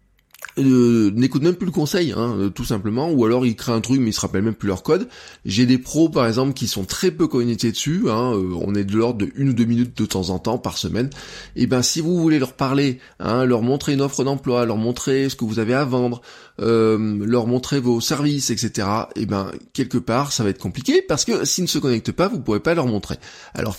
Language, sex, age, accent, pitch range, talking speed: French, male, 20-39, French, 110-145 Hz, 250 wpm